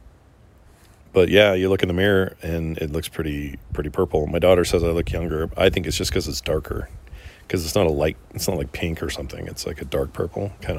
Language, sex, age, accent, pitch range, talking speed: English, male, 40-59, American, 80-95 Hz, 240 wpm